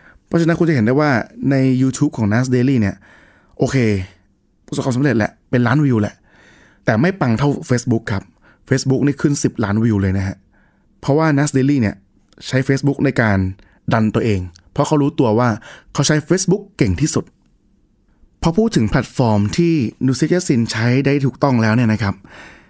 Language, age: Thai, 20-39